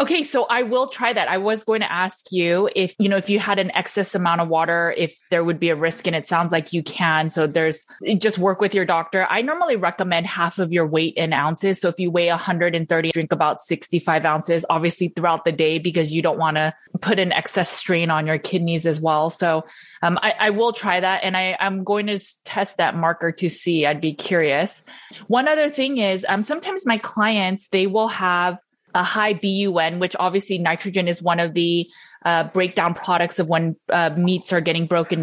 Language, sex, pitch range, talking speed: English, female, 165-195 Hz, 220 wpm